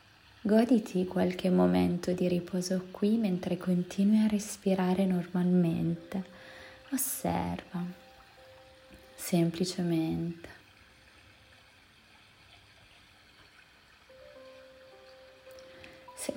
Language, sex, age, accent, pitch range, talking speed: Italian, female, 20-39, native, 170-210 Hz, 50 wpm